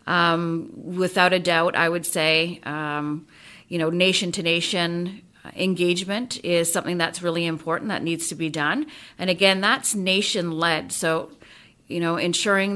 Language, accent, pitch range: English, American, 165-195 Hz